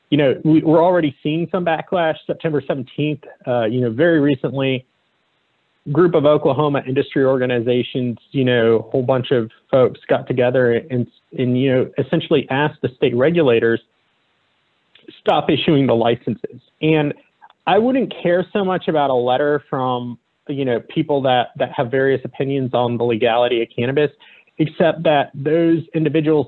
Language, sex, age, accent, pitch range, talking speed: English, male, 30-49, American, 125-155 Hz, 155 wpm